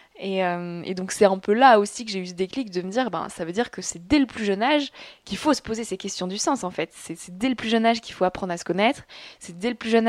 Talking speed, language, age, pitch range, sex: 335 wpm, French, 20-39, 185-215 Hz, female